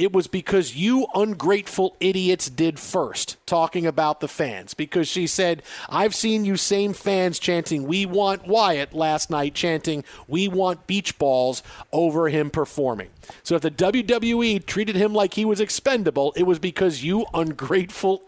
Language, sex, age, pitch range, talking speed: English, male, 40-59, 155-200 Hz, 160 wpm